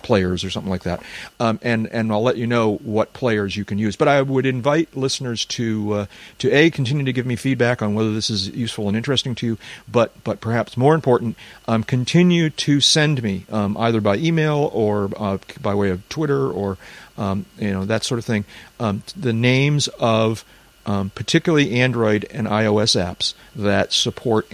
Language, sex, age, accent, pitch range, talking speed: English, male, 40-59, American, 100-125 Hz, 195 wpm